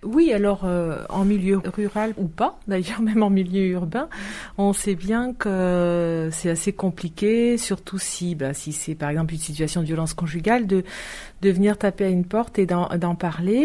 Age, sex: 40-59, female